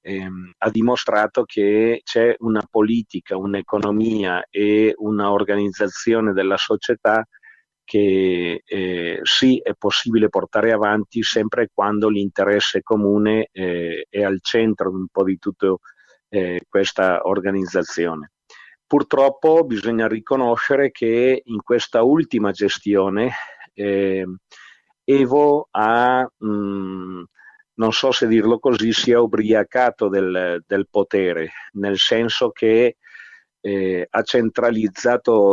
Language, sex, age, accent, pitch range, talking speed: Italian, male, 40-59, native, 95-115 Hz, 105 wpm